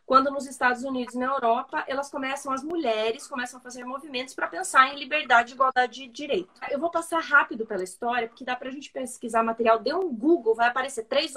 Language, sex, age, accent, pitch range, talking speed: Portuguese, female, 20-39, Brazilian, 225-300 Hz, 205 wpm